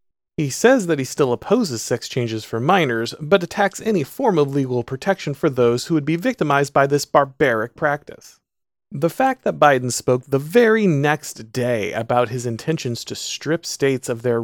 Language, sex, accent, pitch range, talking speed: English, male, American, 125-170 Hz, 185 wpm